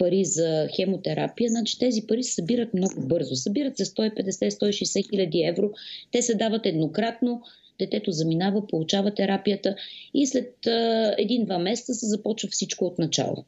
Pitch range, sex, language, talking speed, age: 185-230 Hz, female, Bulgarian, 145 wpm, 30-49